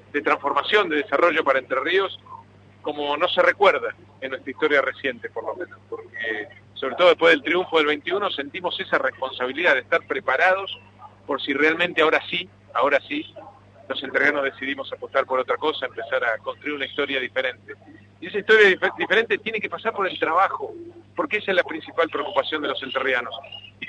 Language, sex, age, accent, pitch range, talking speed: Spanish, male, 40-59, Argentinian, 150-200 Hz, 185 wpm